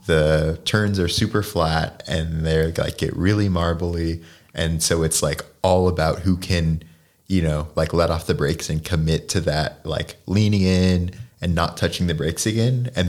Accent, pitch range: American, 80-105 Hz